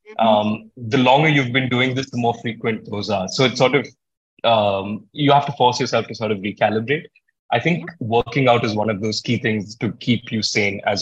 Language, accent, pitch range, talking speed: English, Indian, 105-130 Hz, 225 wpm